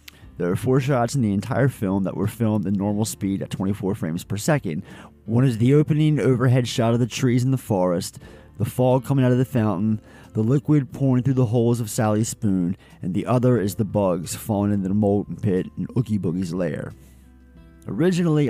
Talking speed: 205 wpm